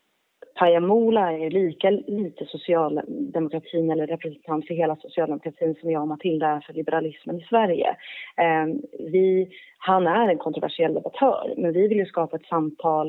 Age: 30-49